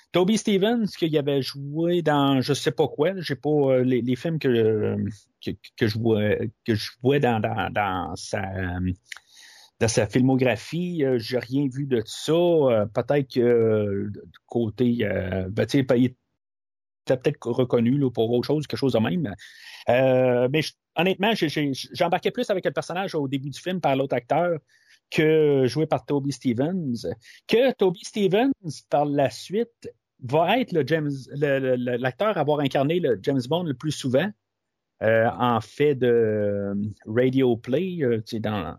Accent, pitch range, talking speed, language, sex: Canadian, 115-150 Hz, 160 wpm, French, male